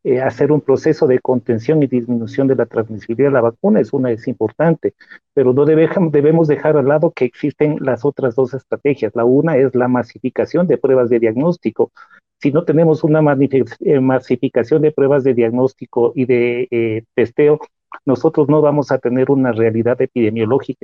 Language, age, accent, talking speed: Spanish, 40-59, Mexican, 175 wpm